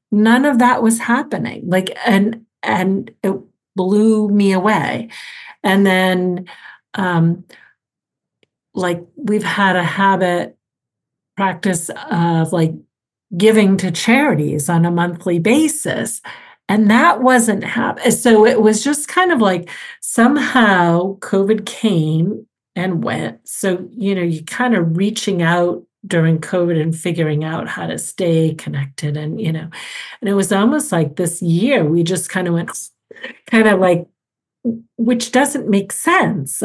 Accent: American